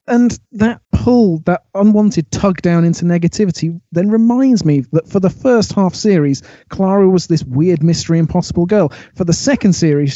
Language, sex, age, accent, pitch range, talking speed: English, male, 30-49, British, 150-210 Hz, 170 wpm